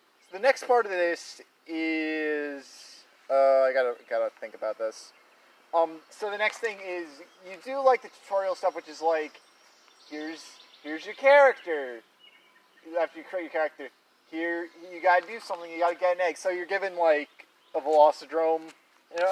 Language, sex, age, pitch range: English, male, 30-49, 155-200 Hz